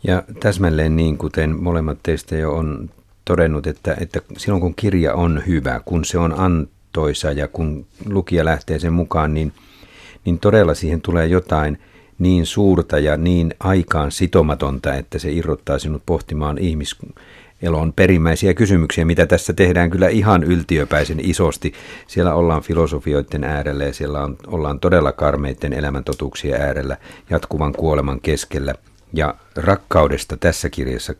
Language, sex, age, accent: Finnish, male, 50-69, native